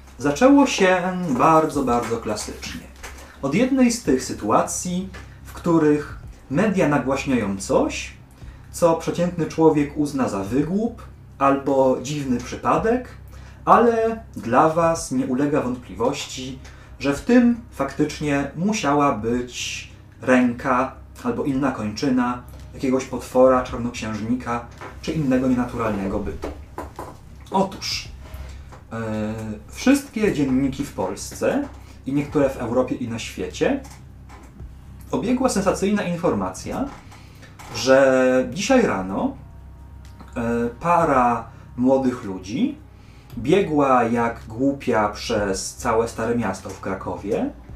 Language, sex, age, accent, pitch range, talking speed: Polish, male, 30-49, native, 115-150 Hz, 95 wpm